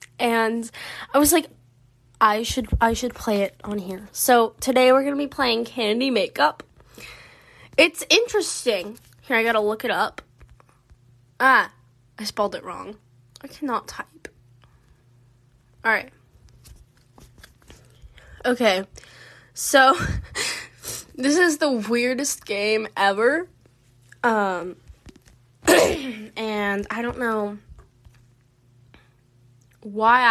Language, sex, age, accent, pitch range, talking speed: English, female, 10-29, American, 190-280 Hz, 105 wpm